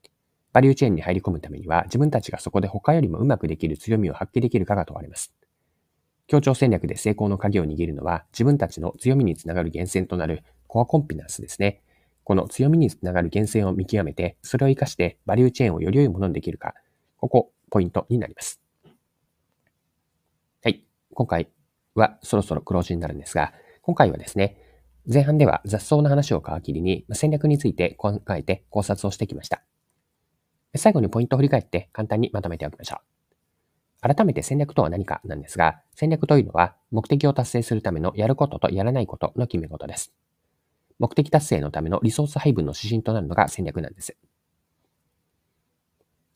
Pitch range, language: 85-130 Hz, Japanese